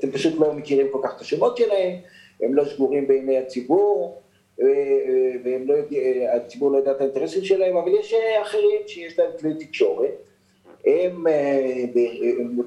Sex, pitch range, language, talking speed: male, 125-195 Hz, Hebrew, 140 wpm